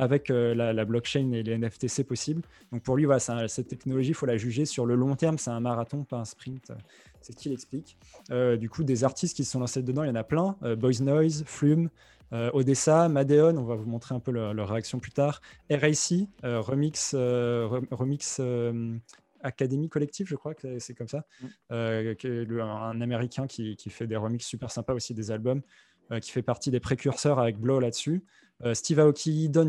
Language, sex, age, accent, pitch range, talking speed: French, male, 20-39, French, 120-150 Hz, 220 wpm